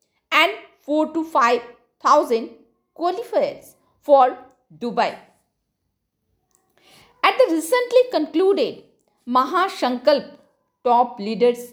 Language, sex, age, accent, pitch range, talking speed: Hindi, female, 50-69, native, 235-335 Hz, 75 wpm